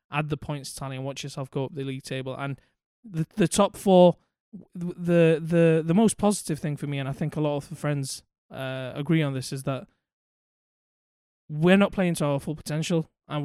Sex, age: male, 20-39